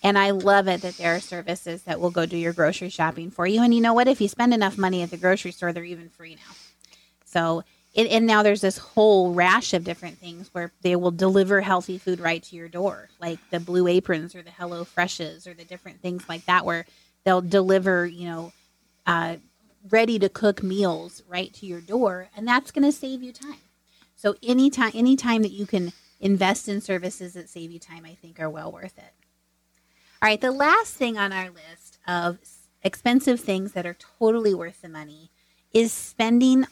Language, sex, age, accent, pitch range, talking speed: English, female, 30-49, American, 175-205 Hz, 205 wpm